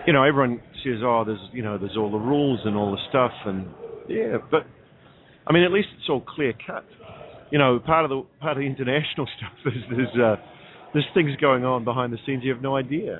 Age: 40-59